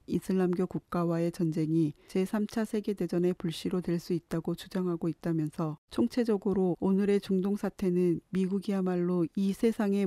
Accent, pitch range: native, 170-200 Hz